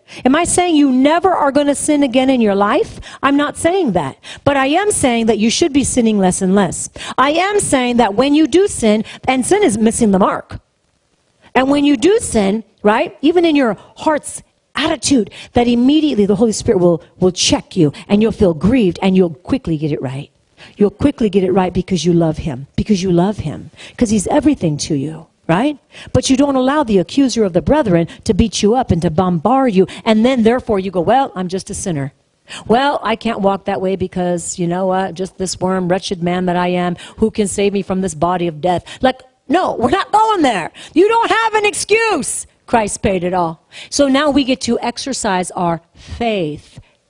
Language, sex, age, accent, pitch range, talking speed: English, female, 40-59, American, 180-270 Hz, 215 wpm